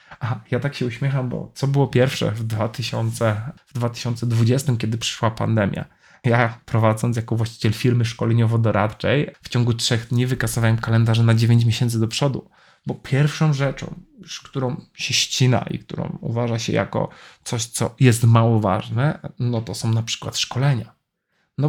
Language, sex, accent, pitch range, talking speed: Polish, male, native, 120-140 Hz, 155 wpm